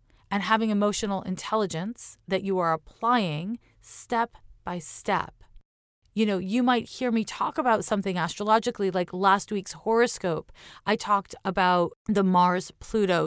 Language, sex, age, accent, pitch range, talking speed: English, female, 30-49, American, 165-220 Hz, 135 wpm